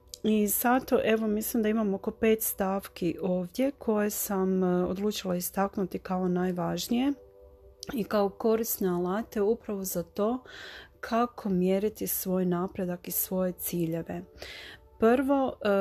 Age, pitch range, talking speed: 40-59, 180-210 Hz, 120 wpm